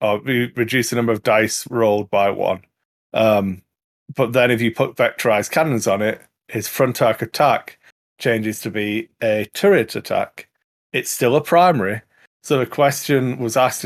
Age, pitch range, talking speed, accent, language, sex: 30-49, 115-140 Hz, 170 wpm, British, English, male